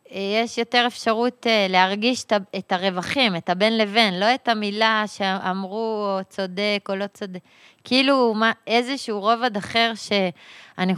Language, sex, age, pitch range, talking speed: Hebrew, female, 20-39, 185-225 Hz, 130 wpm